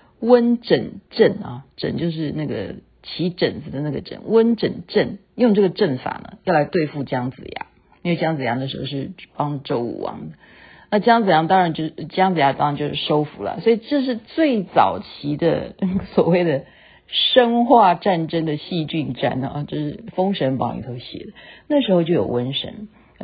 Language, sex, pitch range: Chinese, female, 135-185 Hz